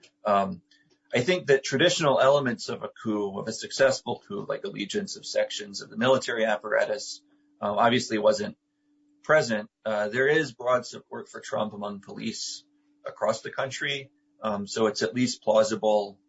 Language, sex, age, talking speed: English, male, 30-49, 160 wpm